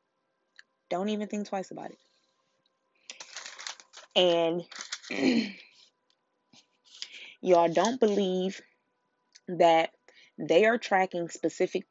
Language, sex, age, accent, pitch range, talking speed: English, female, 20-39, American, 155-180 Hz, 75 wpm